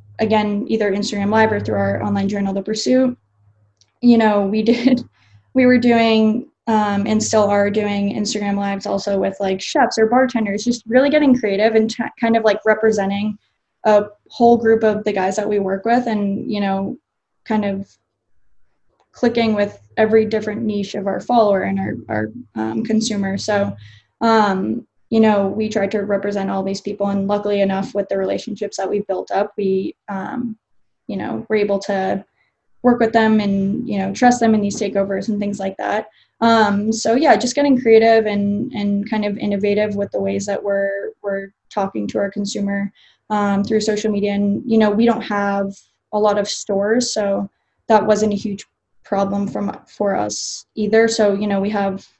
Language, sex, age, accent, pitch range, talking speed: English, female, 10-29, American, 200-220 Hz, 185 wpm